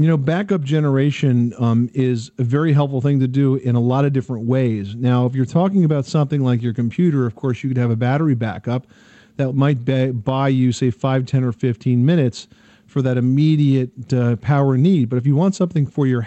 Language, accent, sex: English, American, male